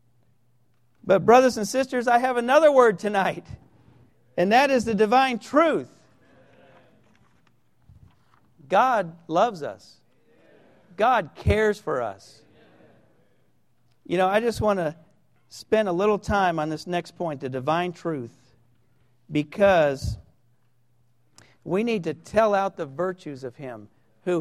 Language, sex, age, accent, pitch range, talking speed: English, male, 50-69, American, 125-210 Hz, 125 wpm